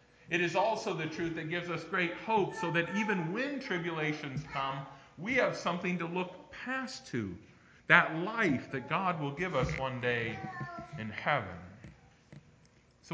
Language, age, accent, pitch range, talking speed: English, 40-59, American, 130-175 Hz, 160 wpm